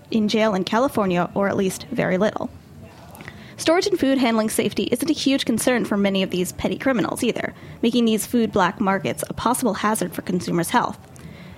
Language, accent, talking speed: English, American, 185 wpm